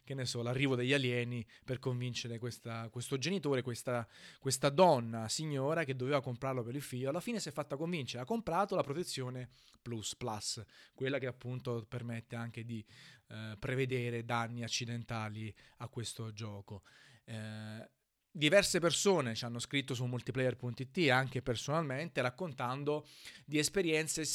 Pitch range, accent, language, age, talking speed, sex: 120-145 Hz, native, Italian, 30-49, 145 wpm, male